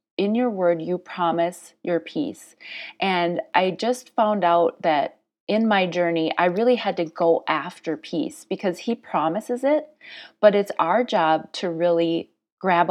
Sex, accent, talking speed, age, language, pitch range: female, American, 160 wpm, 30-49, English, 165-205 Hz